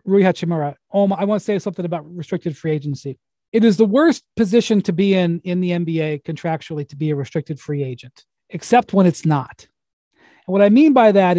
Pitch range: 165-215 Hz